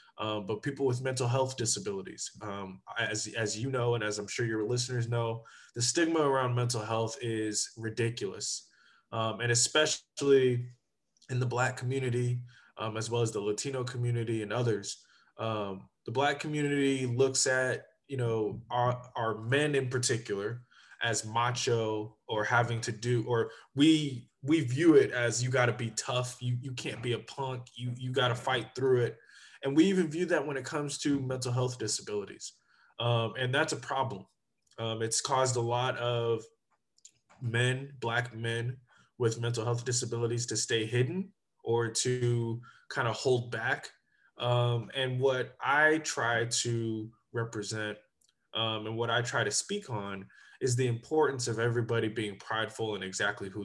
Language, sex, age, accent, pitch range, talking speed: English, male, 20-39, American, 115-130 Hz, 165 wpm